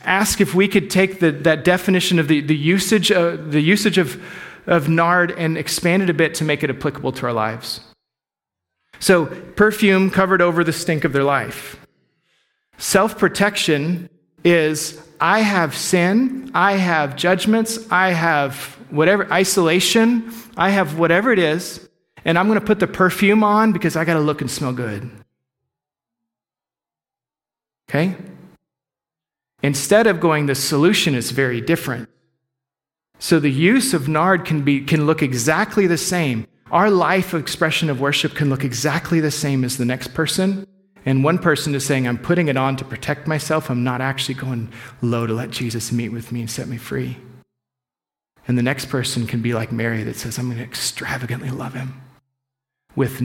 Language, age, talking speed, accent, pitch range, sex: English, 40-59, 170 wpm, American, 130-180 Hz, male